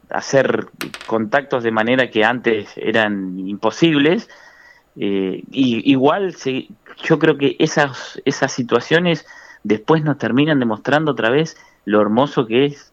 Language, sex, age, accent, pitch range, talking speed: Spanish, male, 30-49, Argentinian, 100-135 Hz, 130 wpm